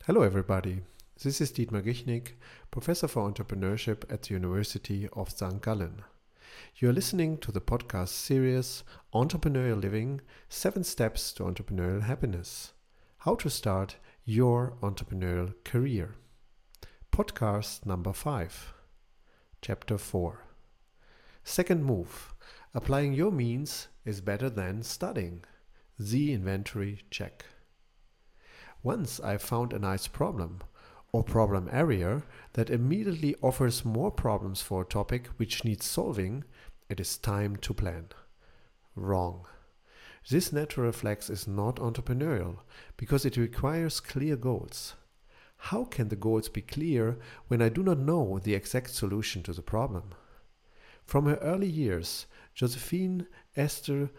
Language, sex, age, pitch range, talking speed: English, male, 50-69, 100-130 Hz, 125 wpm